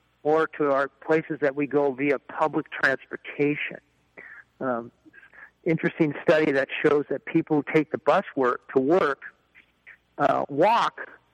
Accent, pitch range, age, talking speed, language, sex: American, 140-180 Hz, 50-69, 140 wpm, English, male